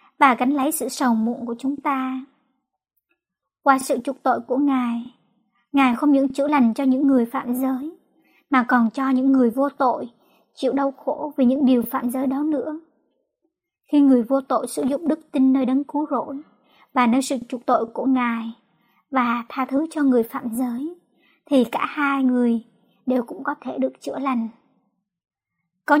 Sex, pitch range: male, 245-275 Hz